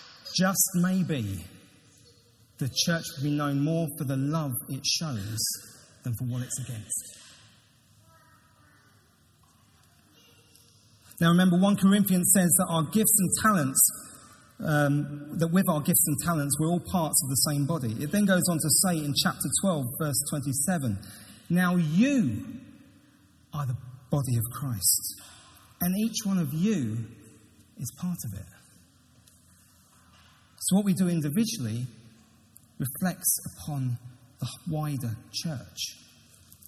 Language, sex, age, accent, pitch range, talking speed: English, male, 30-49, British, 115-170 Hz, 130 wpm